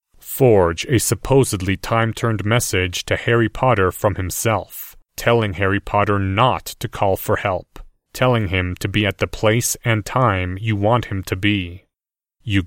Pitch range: 95-115 Hz